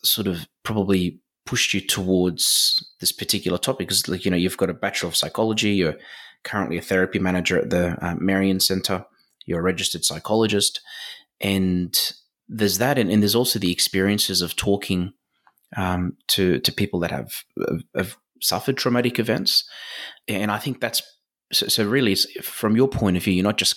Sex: male